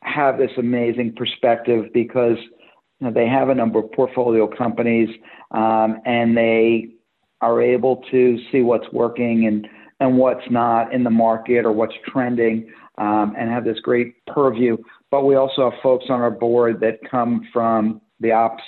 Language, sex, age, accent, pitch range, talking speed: English, male, 50-69, American, 115-130 Hz, 160 wpm